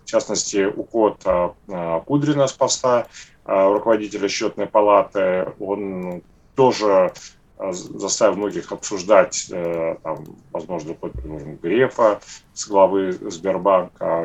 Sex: male